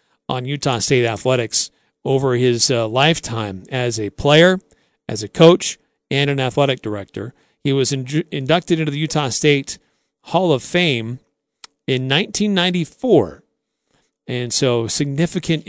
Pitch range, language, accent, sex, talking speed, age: 125-155 Hz, English, American, male, 125 wpm, 40-59